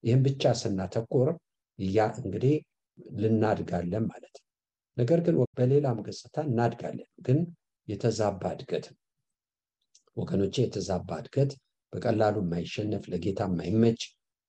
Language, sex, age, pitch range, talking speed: English, male, 60-79, 95-125 Hz, 60 wpm